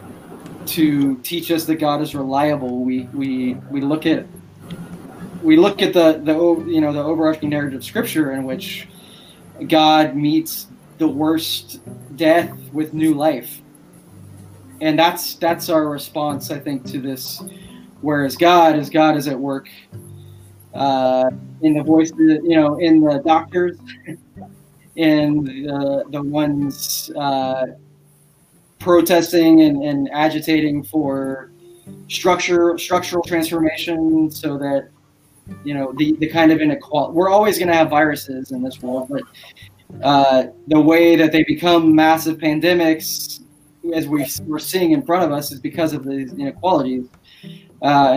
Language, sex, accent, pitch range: Indonesian, male, American, 135-160 Hz